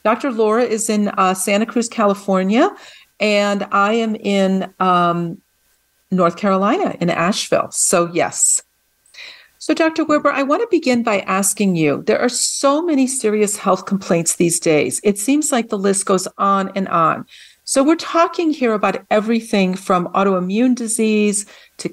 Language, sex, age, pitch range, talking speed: English, female, 50-69, 180-235 Hz, 155 wpm